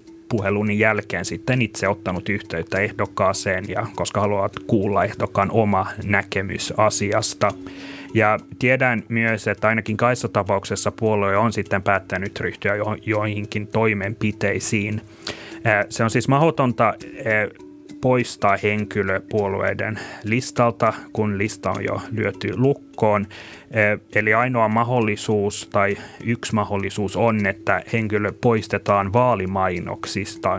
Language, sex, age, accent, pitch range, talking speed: Finnish, male, 30-49, native, 95-110 Hz, 105 wpm